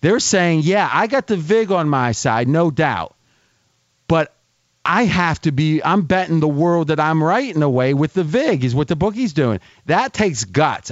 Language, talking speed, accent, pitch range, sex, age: English, 215 wpm, American, 140-185 Hz, male, 40-59